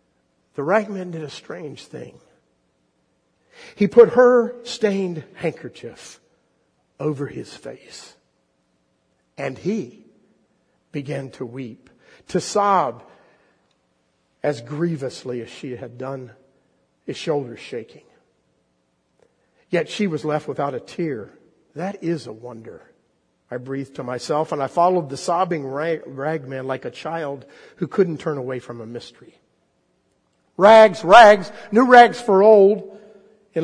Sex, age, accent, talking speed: male, 50-69, American, 120 wpm